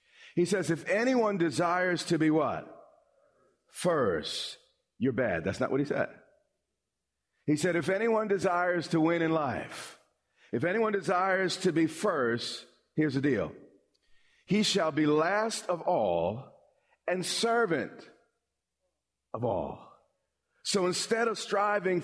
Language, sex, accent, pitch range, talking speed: English, male, American, 170-220 Hz, 130 wpm